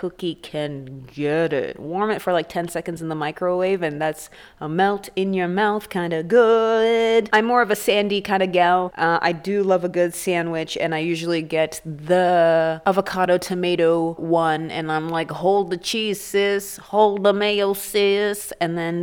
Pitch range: 165-210 Hz